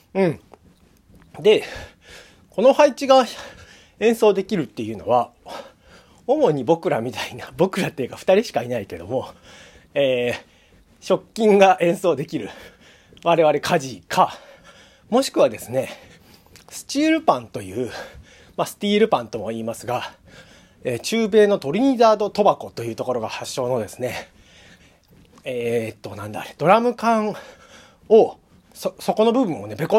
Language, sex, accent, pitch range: Japanese, male, native, 140-220 Hz